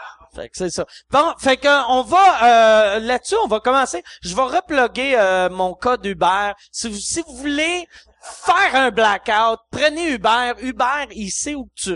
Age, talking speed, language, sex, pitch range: 30-49, 180 wpm, French, male, 185-265 Hz